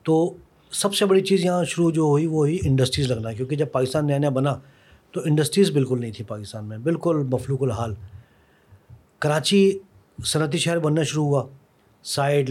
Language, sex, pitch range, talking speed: Urdu, male, 130-170 Hz, 175 wpm